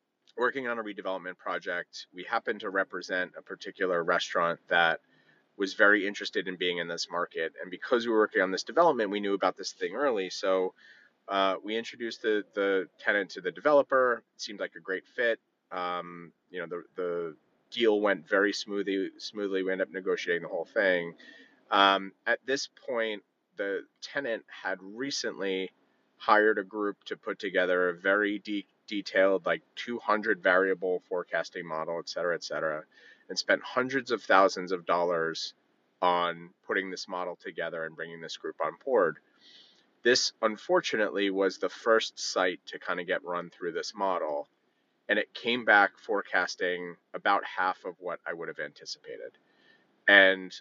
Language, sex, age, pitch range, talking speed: English, male, 30-49, 90-115 Hz, 165 wpm